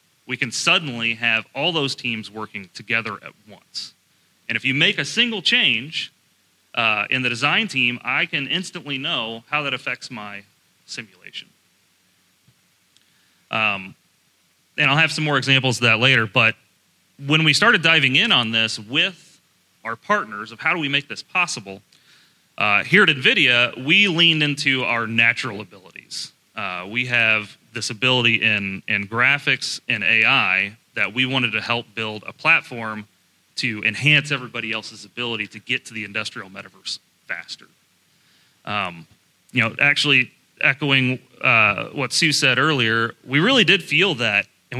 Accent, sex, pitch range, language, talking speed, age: American, male, 110-155 Hz, English, 155 wpm, 30-49